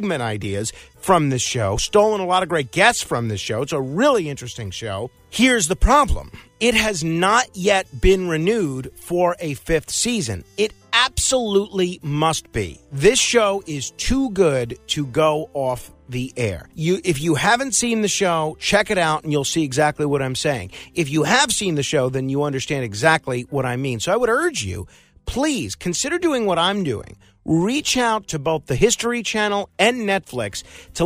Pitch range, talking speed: 140-210 Hz, 185 wpm